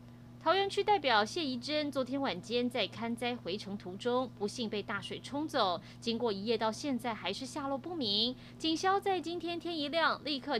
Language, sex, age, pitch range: Chinese, female, 20-39, 205-290 Hz